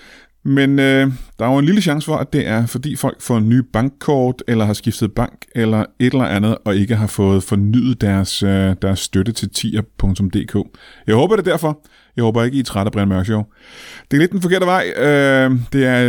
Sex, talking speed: male, 210 wpm